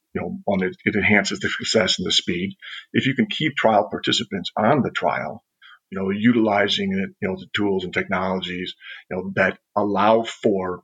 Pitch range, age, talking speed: 95-120 Hz, 50-69, 195 wpm